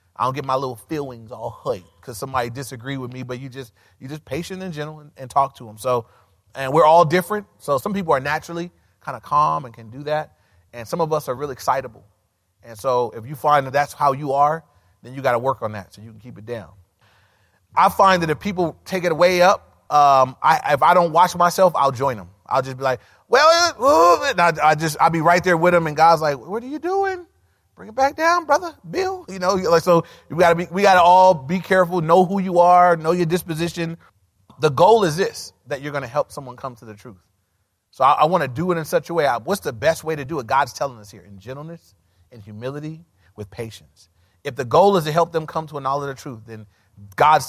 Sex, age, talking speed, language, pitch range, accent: male, 30-49, 245 wpm, English, 115-170 Hz, American